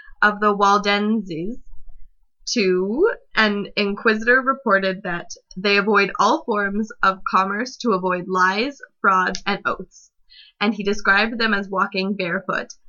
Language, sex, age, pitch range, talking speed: English, female, 20-39, 190-225 Hz, 125 wpm